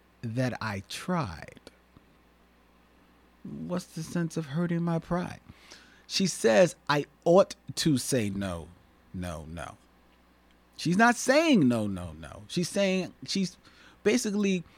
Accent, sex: American, male